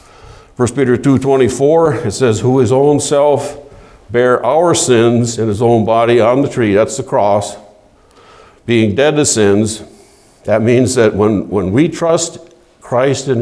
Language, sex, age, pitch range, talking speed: English, male, 60-79, 105-135 Hz, 155 wpm